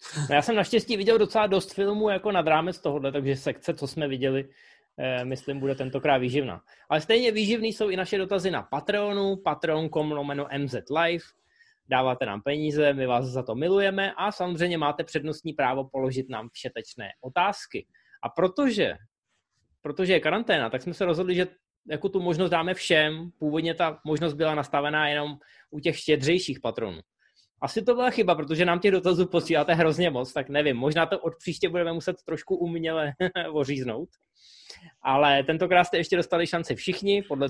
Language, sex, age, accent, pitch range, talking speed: Czech, male, 20-39, native, 140-185 Hz, 165 wpm